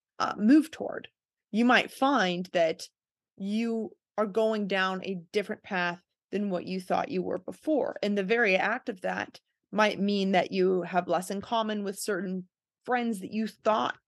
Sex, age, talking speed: female, 30-49, 175 wpm